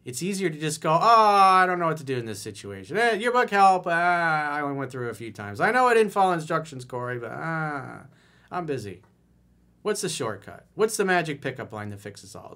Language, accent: English, American